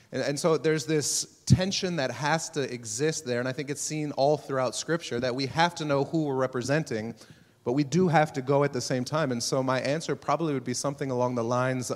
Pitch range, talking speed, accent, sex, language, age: 120-150 Hz, 235 wpm, American, male, English, 30-49